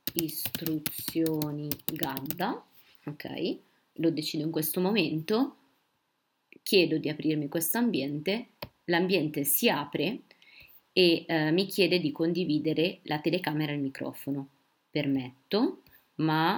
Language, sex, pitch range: Italian, female, 150-185 Hz